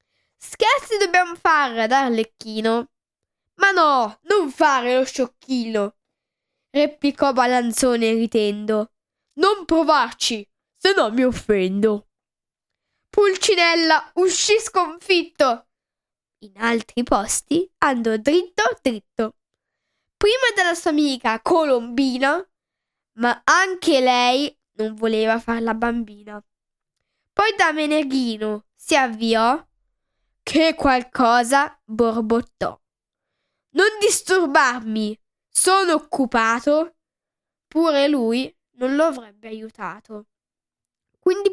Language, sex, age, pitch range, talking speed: Italian, female, 10-29, 230-330 Hz, 85 wpm